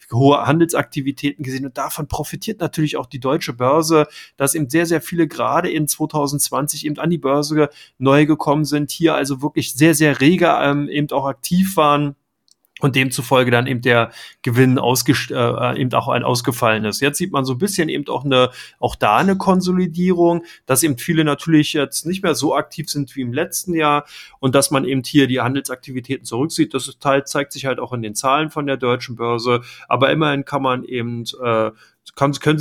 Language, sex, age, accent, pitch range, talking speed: German, male, 30-49, German, 125-150 Hz, 195 wpm